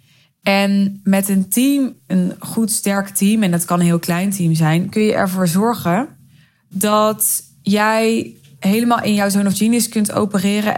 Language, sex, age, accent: Dutch, female, 20-39, Dutch